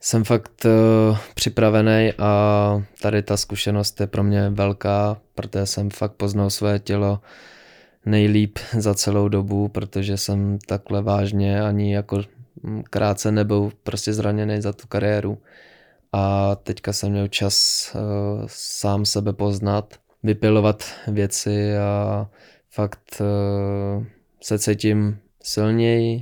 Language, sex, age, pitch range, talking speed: Czech, male, 20-39, 100-105 Hz, 120 wpm